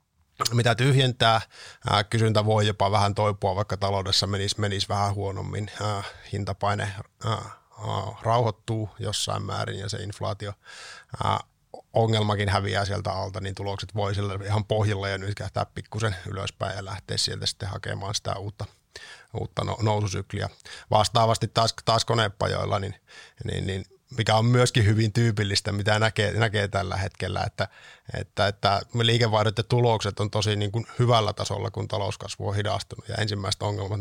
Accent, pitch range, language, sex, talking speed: native, 100-115 Hz, Finnish, male, 140 wpm